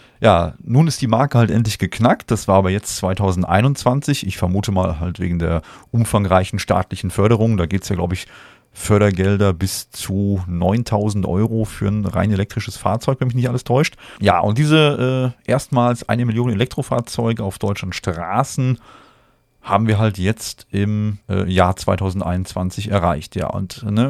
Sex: male